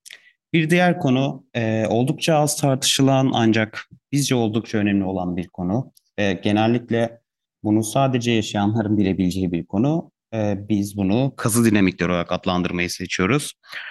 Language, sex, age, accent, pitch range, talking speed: Turkish, male, 30-49, native, 100-125 Hz, 130 wpm